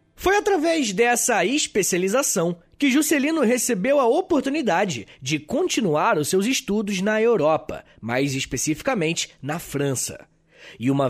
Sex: male